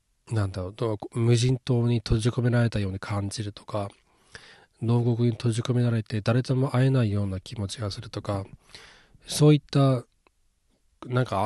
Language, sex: Japanese, male